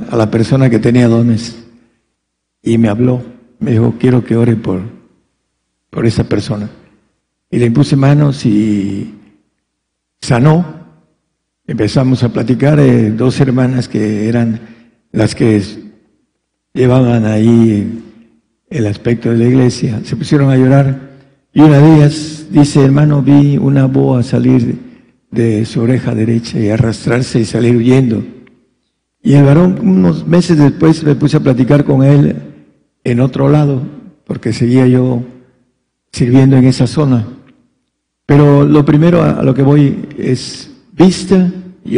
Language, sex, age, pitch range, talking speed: Spanish, male, 60-79, 115-145 Hz, 135 wpm